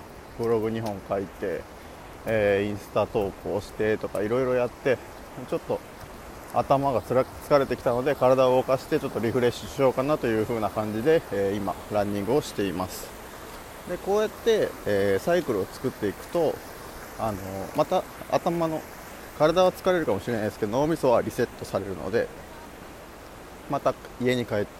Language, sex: Japanese, male